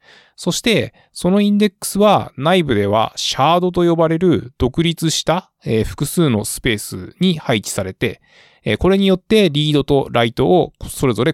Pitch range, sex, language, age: 115-165 Hz, male, Japanese, 20-39